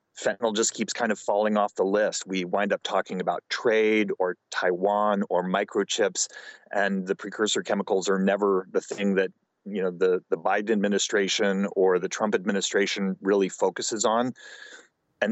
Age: 30-49